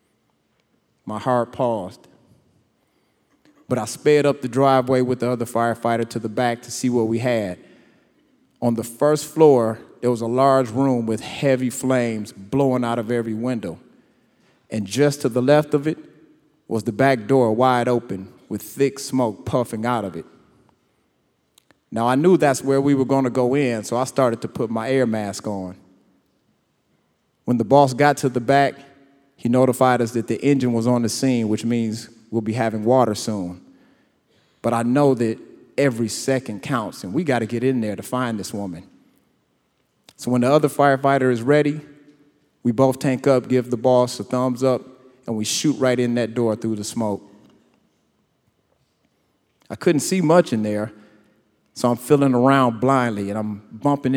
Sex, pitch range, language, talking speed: male, 115-135 Hz, English, 175 wpm